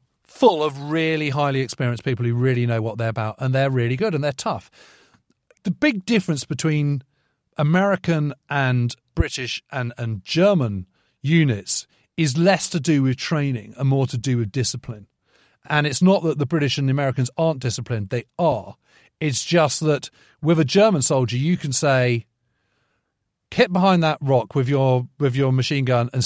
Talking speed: 175 wpm